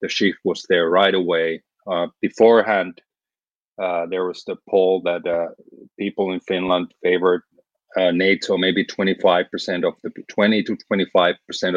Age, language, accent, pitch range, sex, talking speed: 30-49, English, Finnish, 85-100 Hz, male, 155 wpm